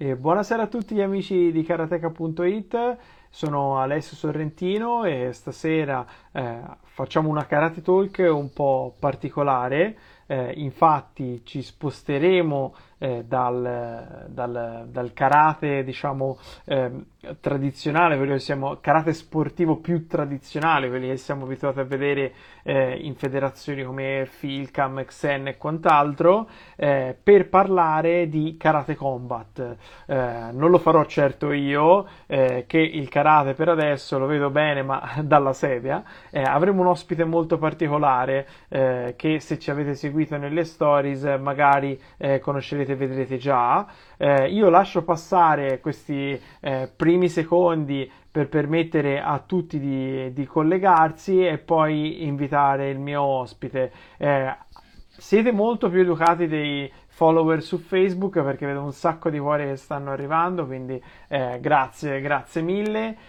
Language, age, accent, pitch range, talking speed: Italian, 30-49, native, 135-165 Hz, 135 wpm